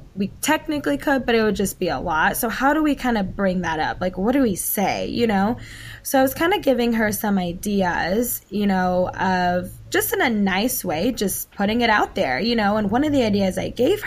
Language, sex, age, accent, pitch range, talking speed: English, female, 10-29, American, 195-250 Hz, 245 wpm